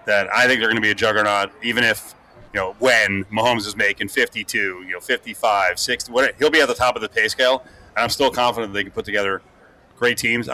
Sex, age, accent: male, 30-49, American